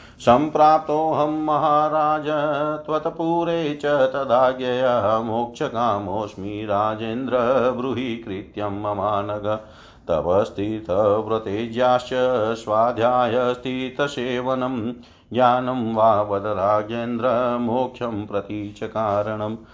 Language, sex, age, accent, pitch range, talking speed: Hindi, male, 40-59, native, 110-145 Hz, 60 wpm